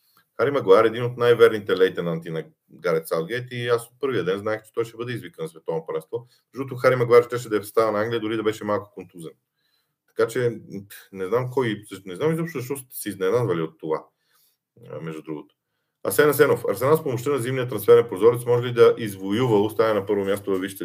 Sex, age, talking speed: male, 40-59, 210 wpm